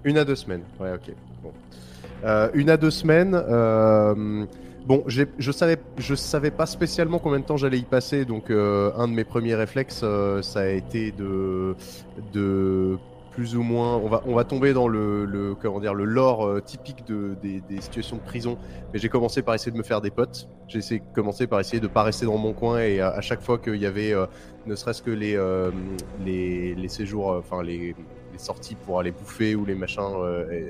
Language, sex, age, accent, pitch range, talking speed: French, male, 20-39, French, 95-120 Hz, 220 wpm